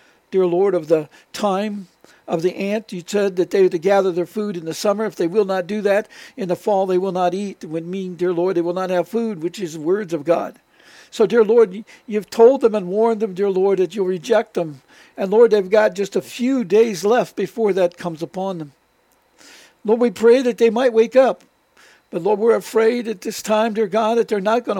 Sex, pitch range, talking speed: male, 190-230 Hz, 235 wpm